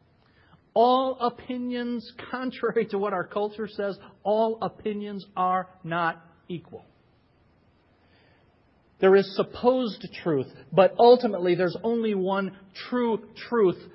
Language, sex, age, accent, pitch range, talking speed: English, male, 50-69, American, 125-205 Hz, 105 wpm